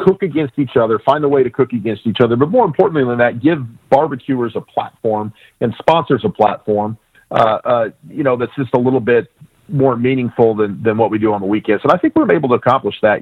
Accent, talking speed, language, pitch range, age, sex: American, 235 wpm, English, 110-130 Hz, 40-59, male